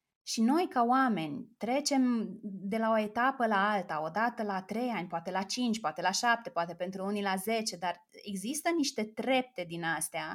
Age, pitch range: 20-39, 175-220 Hz